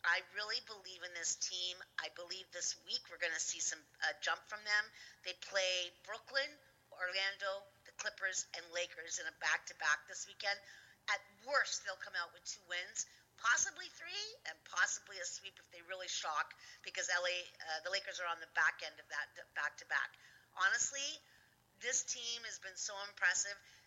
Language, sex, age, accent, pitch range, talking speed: English, female, 50-69, American, 175-205 Hz, 175 wpm